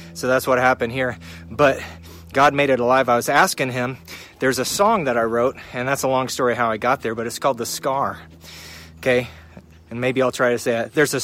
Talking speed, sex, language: 235 wpm, male, English